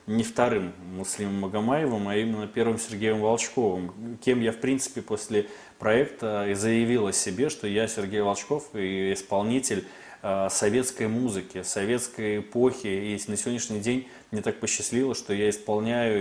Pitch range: 105-120 Hz